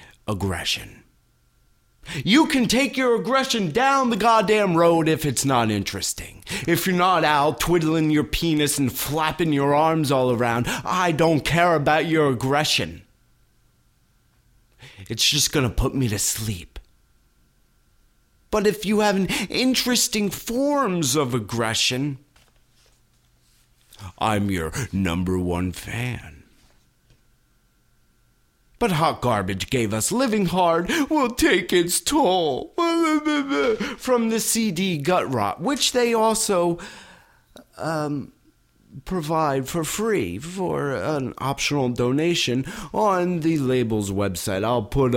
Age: 40-59